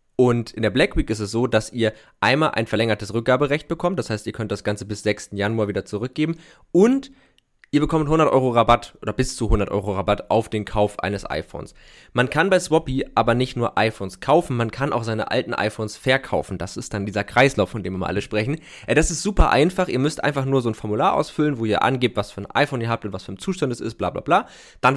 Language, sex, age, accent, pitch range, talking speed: German, male, 20-39, German, 105-135 Hz, 250 wpm